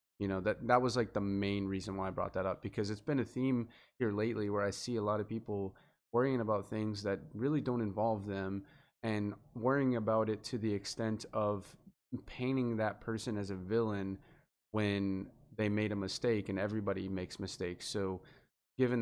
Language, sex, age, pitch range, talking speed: English, male, 20-39, 95-110 Hz, 190 wpm